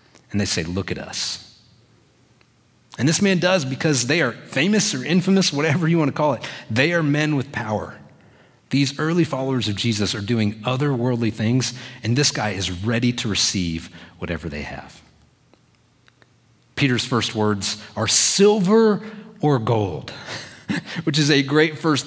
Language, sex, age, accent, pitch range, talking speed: English, male, 30-49, American, 100-135 Hz, 160 wpm